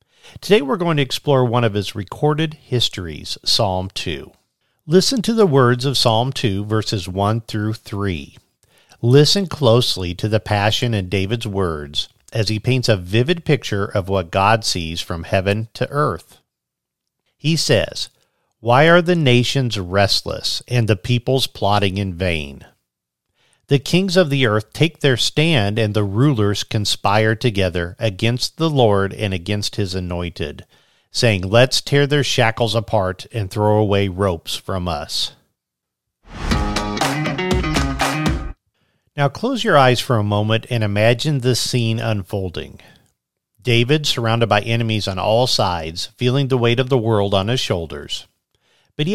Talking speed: 145 wpm